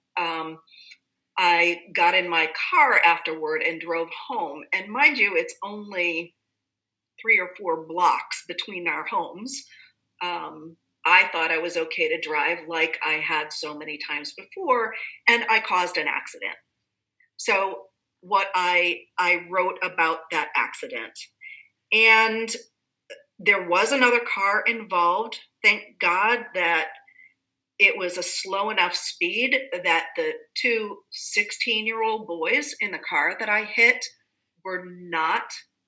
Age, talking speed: 40-59, 130 wpm